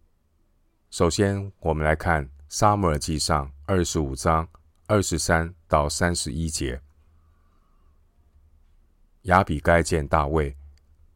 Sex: male